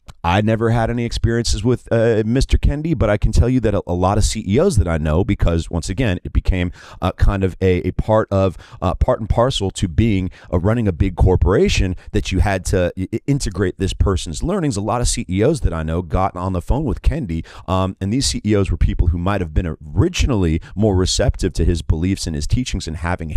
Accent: American